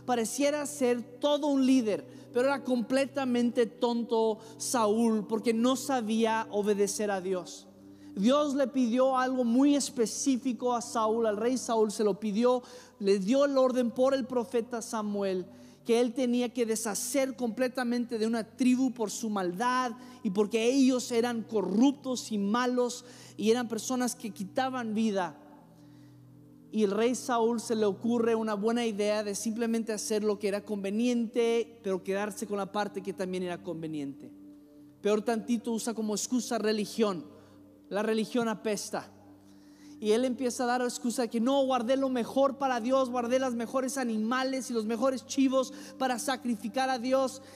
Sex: male